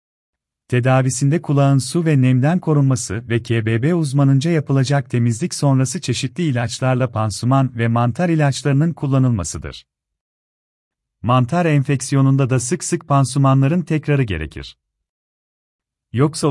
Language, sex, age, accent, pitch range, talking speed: Turkish, male, 40-59, native, 120-145 Hz, 100 wpm